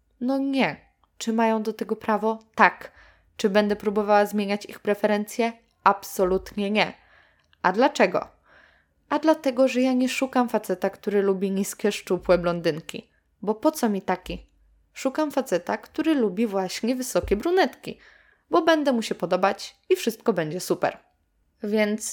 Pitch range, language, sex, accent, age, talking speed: 175-220 Hz, Polish, female, native, 20-39, 140 wpm